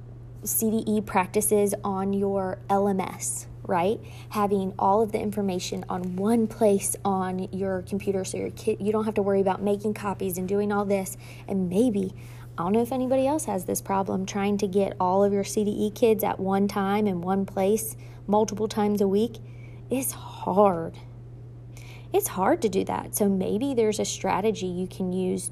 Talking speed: 180 wpm